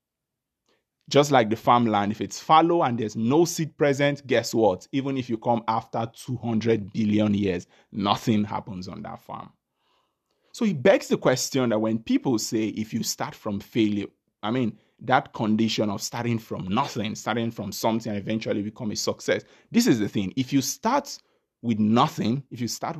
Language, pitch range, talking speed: English, 110-180 Hz, 180 wpm